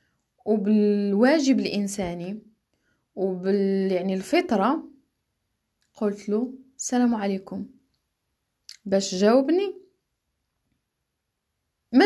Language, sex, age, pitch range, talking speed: Arabic, female, 20-39, 195-260 Hz, 60 wpm